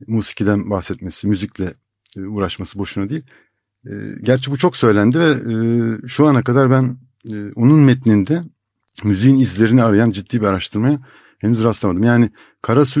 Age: 60-79